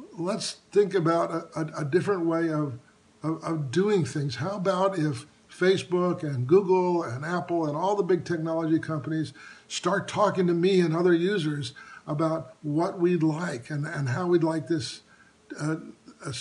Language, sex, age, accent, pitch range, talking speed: English, male, 50-69, American, 150-175 Hz, 165 wpm